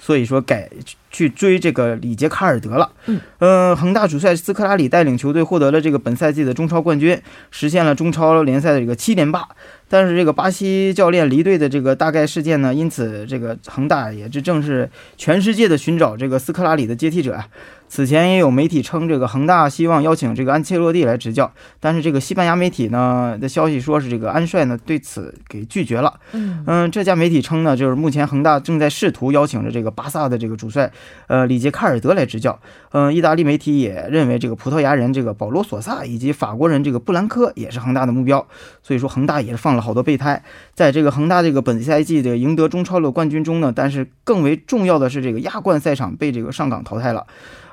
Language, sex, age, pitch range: Korean, male, 20-39, 125-160 Hz